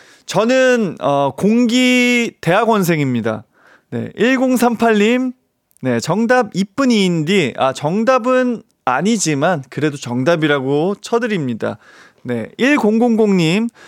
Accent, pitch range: native, 150-220 Hz